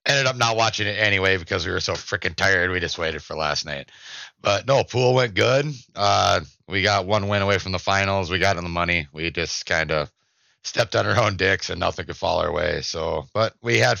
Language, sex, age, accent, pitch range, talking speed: English, male, 30-49, American, 85-105 Hz, 240 wpm